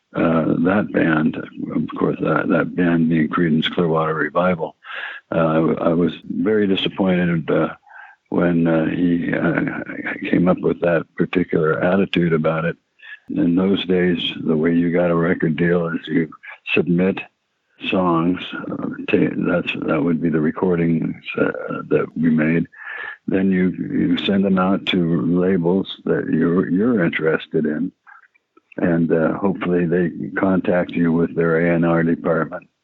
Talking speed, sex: 150 wpm, male